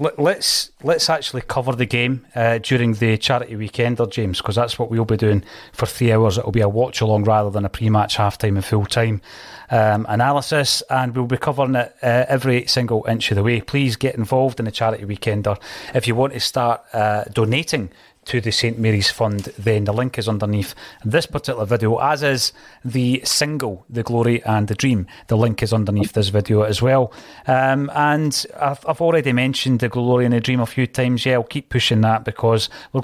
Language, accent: English, British